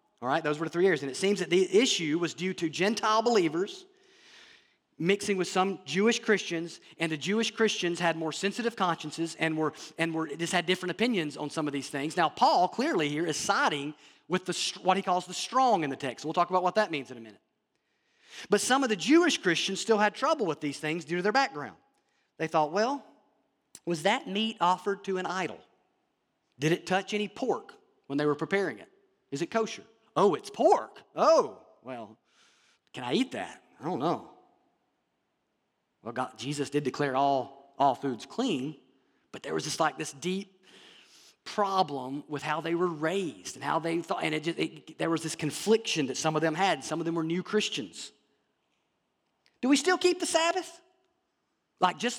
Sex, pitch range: male, 155-225 Hz